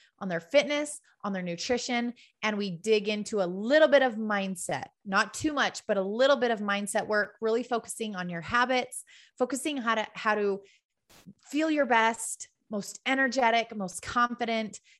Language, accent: English, American